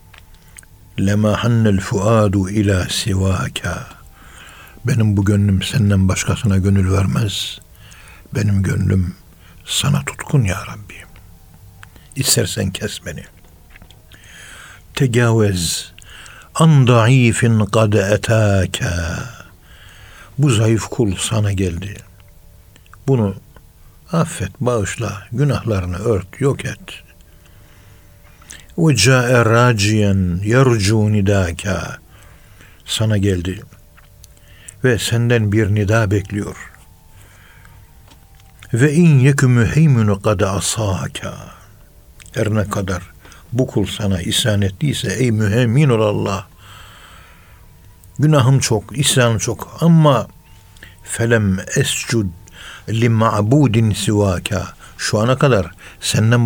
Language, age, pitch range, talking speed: Turkish, 60-79, 95-115 Hz, 85 wpm